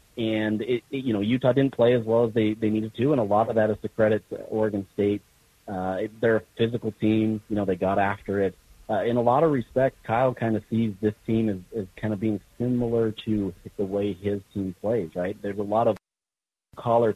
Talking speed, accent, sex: 225 wpm, American, male